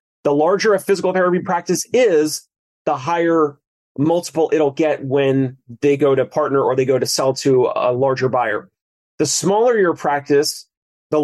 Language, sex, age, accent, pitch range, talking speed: English, male, 30-49, American, 145-180 Hz, 165 wpm